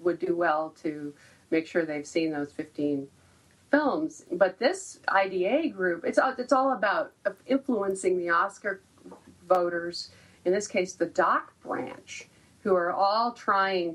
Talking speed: 140 wpm